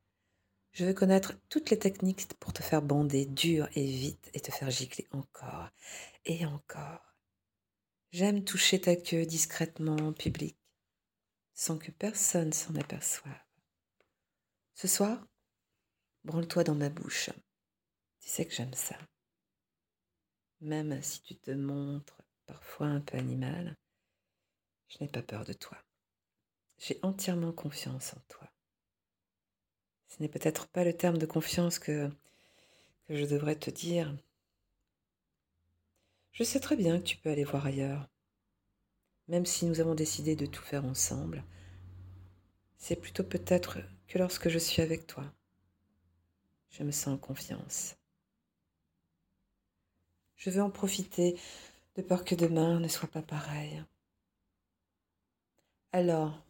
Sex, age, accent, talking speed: female, 50-69, French, 130 wpm